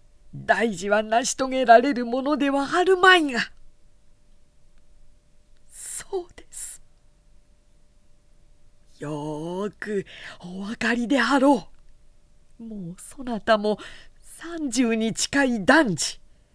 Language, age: Japanese, 40-59